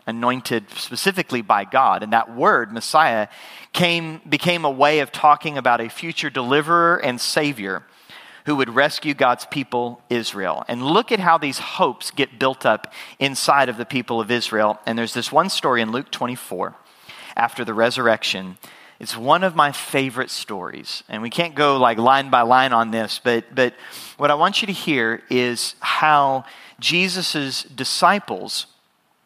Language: English